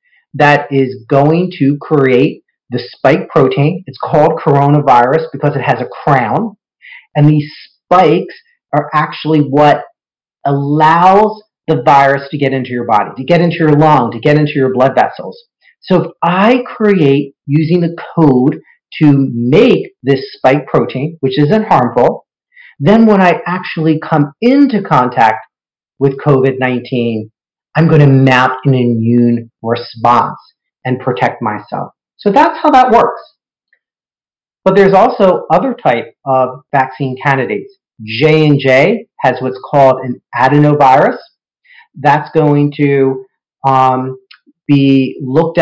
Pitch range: 130-160 Hz